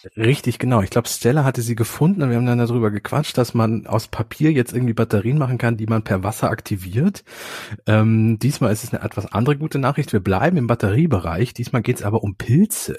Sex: male